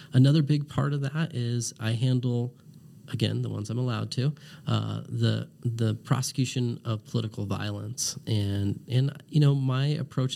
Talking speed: 155 wpm